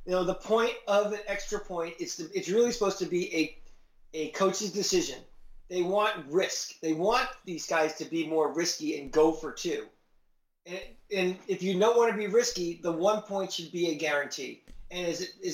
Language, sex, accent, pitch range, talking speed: English, male, American, 155-205 Hz, 205 wpm